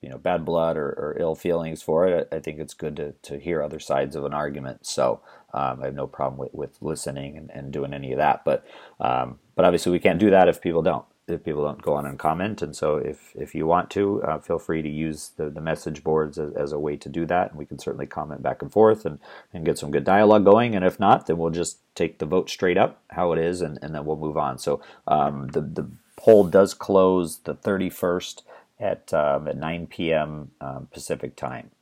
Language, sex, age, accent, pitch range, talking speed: English, male, 30-49, American, 75-90 Hz, 245 wpm